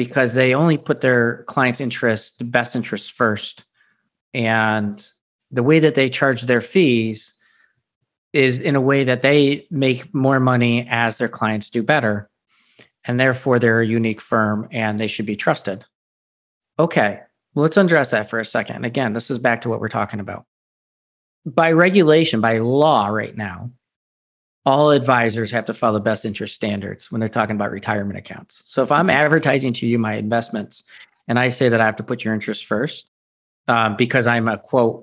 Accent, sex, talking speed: American, male, 180 wpm